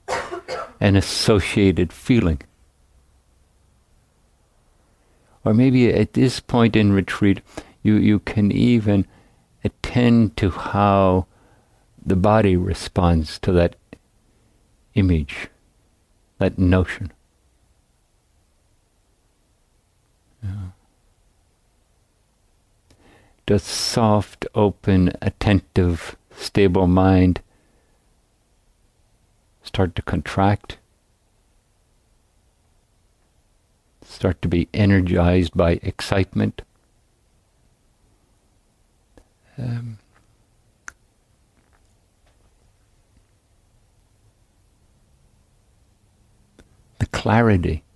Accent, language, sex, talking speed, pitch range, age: American, English, male, 55 wpm, 90-105 Hz, 60-79